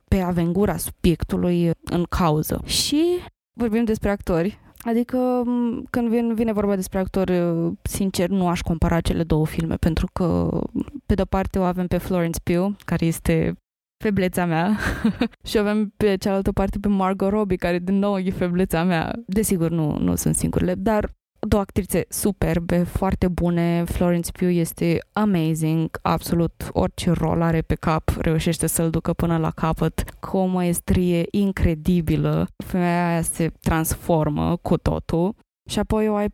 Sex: female